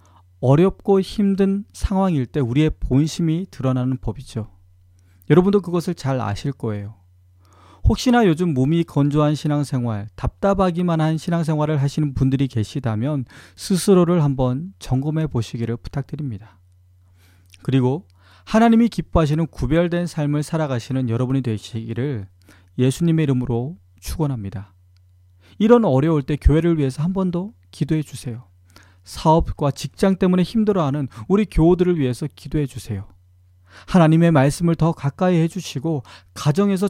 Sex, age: male, 40-59